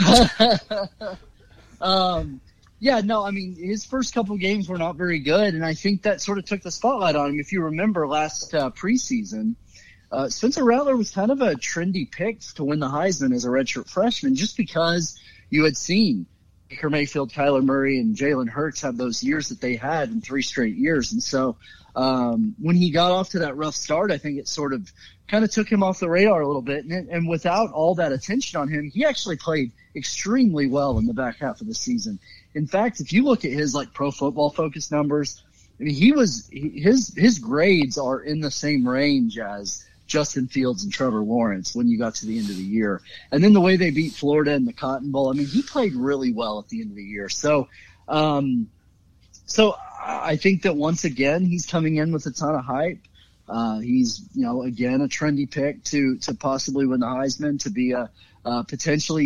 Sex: male